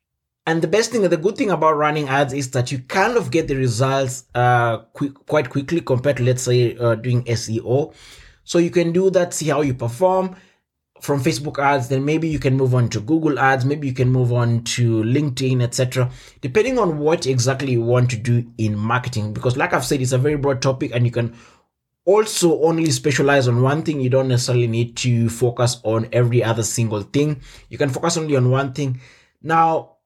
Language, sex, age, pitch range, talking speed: English, male, 20-39, 120-150 Hz, 210 wpm